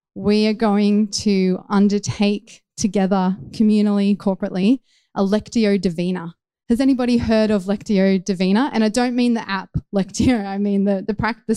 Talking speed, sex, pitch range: 150 wpm, female, 190-235 Hz